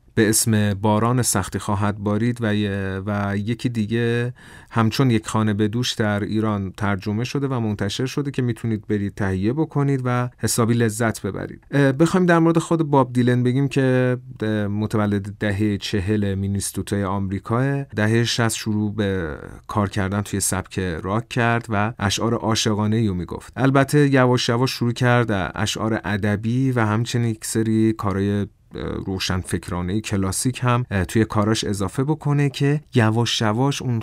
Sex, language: male, Persian